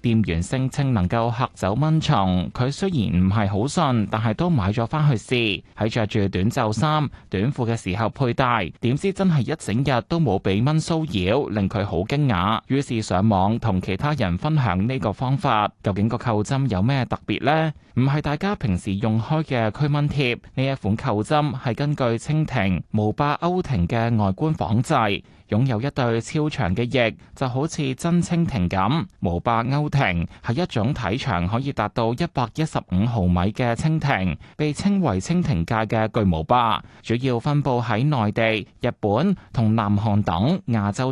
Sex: male